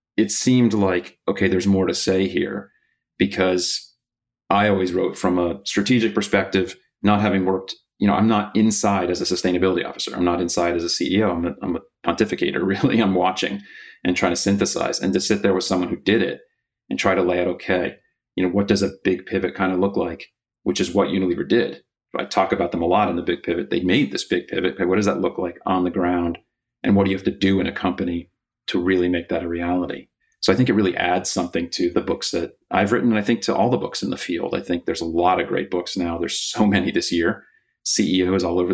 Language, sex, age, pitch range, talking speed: English, male, 30-49, 90-100 Hz, 245 wpm